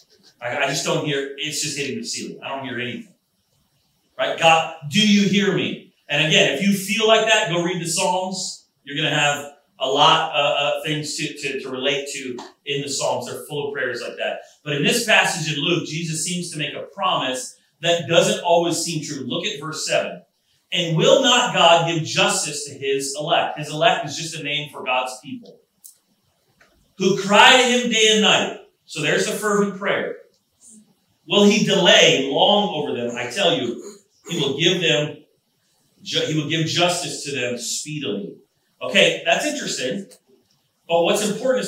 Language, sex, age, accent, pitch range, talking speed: English, male, 30-49, American, 145-195 Hz, 190 wpm